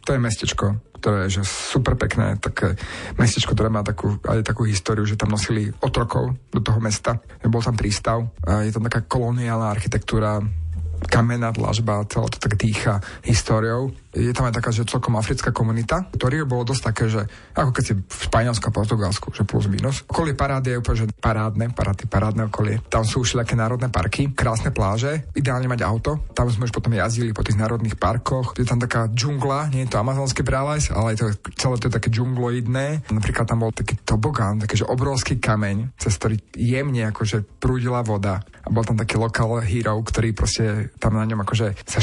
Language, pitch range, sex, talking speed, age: Slovak, 110-130 Hz, male, 195 wpm, 30-49